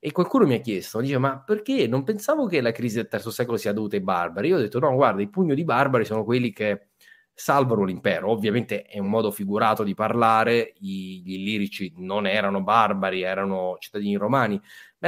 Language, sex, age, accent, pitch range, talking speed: Italian, male, 30-49, native, 105-140 Hz, 205 wpm